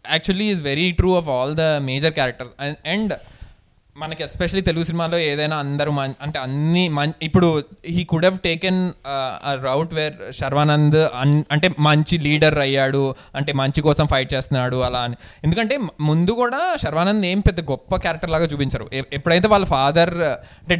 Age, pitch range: 20-39, 135-180 Hz